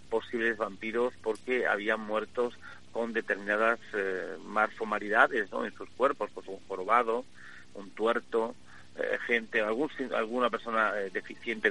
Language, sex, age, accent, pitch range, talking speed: Spanish, male, 40-59, Spanish, 100-115 Hz, 125 wpm